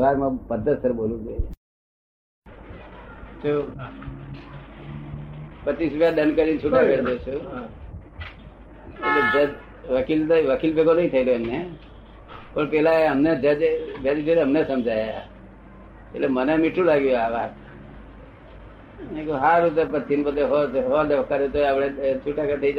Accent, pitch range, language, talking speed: native, 110-155 Hz, Gujarati, 40 wpm